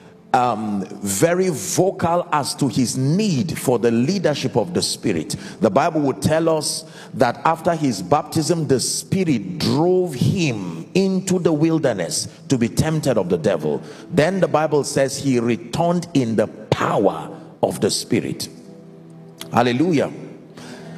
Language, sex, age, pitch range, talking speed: English, male, 50-69, 130-175 Hz, 135 wpm